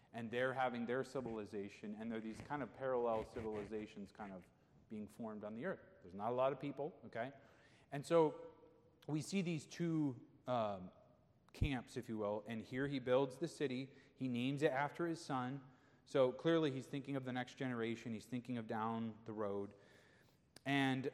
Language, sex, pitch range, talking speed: English, male, 115-140 Hz, 180 wpm